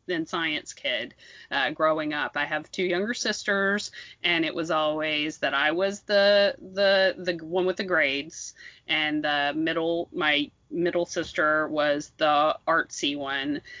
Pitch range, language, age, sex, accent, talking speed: 155-205 Hz, English, 30-49, female, American, 150 wpm